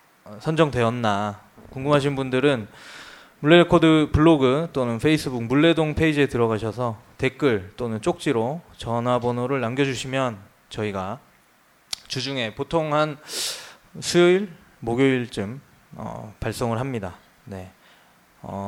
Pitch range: 110-145 Hz